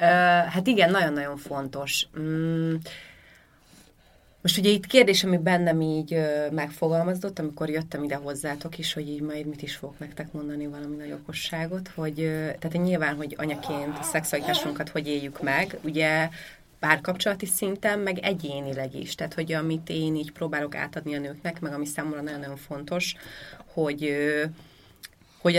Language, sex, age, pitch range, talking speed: Hungarian, female, 30-49, 145-165 Hz, 135 wpm